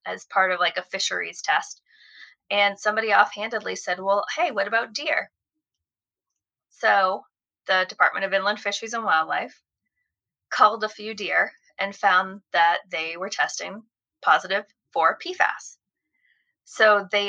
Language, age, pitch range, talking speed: English, 20-39, 180-220 Hz, 135 wpm